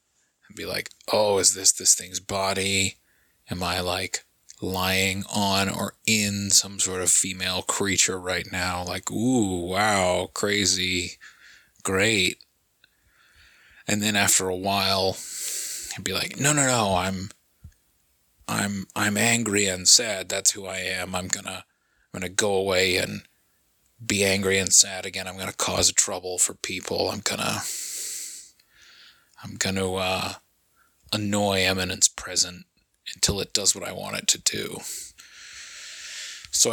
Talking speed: 150 wpm